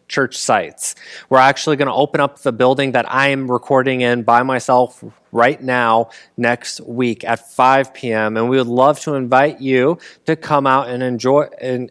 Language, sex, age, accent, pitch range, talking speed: English, male, 20-39, American, 125-145 Hz, 185 wpm